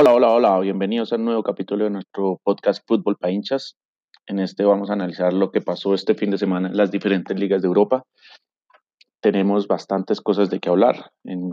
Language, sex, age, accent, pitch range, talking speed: Spanish, male, 30-49, Colombian, 90-100 Hz, 205 wpm